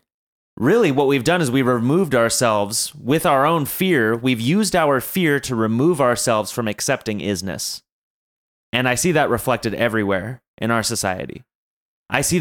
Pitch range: 100-125 Hz